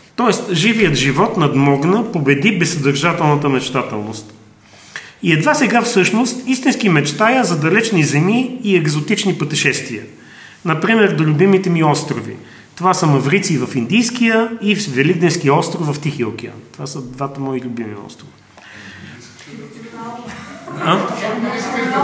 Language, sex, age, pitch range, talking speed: Bulgarian, male, 40-59, 140-195 Hz, 115 wpm